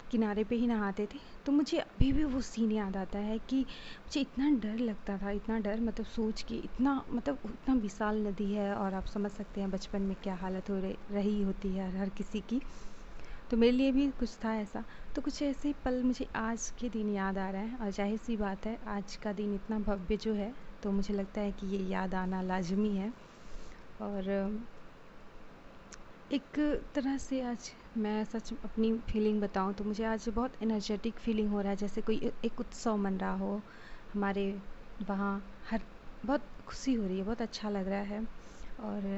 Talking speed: 200 wpm